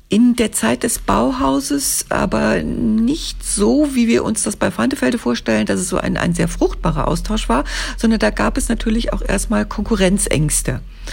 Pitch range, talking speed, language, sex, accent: 170-225 Hz, 175 wpm, German, female, German